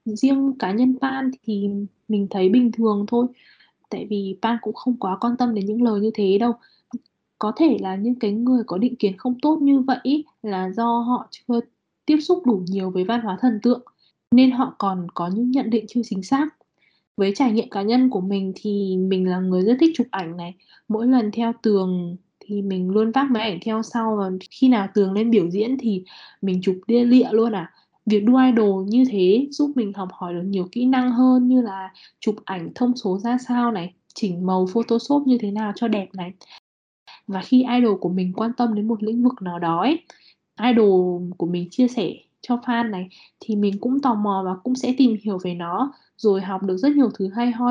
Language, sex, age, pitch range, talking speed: Vietnamese, female, 20-39, 190-245 Hz, 220 wpm